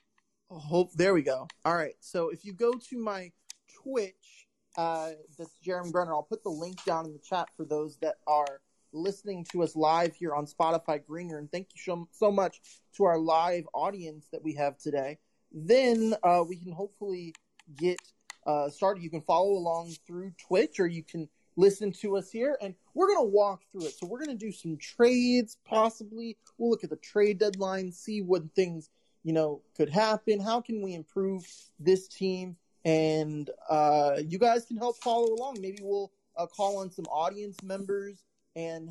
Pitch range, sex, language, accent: 165-210 Hz, male, English, American